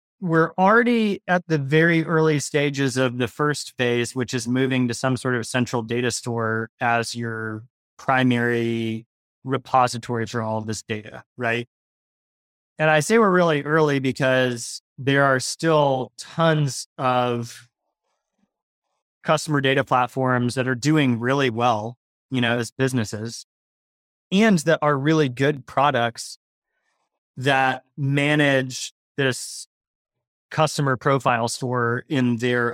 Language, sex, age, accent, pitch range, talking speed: English, male, 30-49, American, 115-145 Hz, 125 wpm